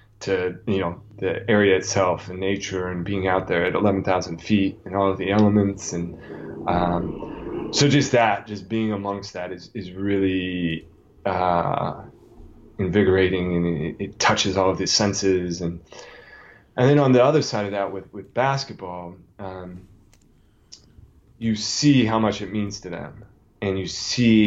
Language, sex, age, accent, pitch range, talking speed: English, male, 20-39, American, 90-105 Hz, 165 wpm